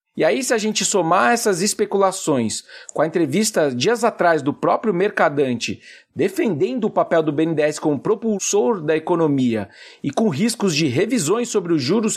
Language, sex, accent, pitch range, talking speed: Portuguese, male, Brazilian, 175-235 Hz, 165 wpm